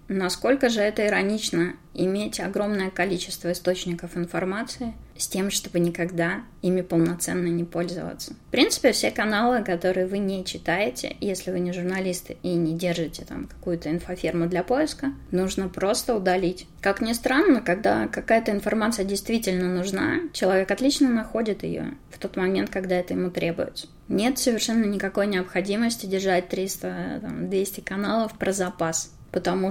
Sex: female